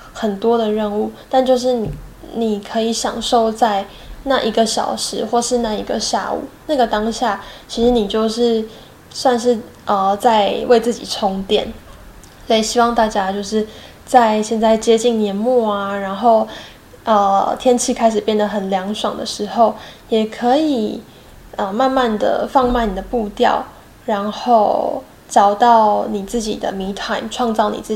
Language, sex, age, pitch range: Chinese, female, 10-29, 205-240 Hz